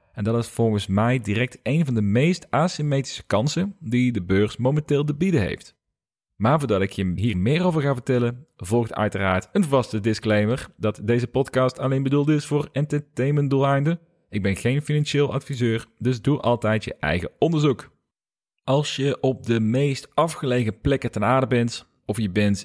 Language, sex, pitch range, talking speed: Dutch, male, 105-135 Hz, 170 wpm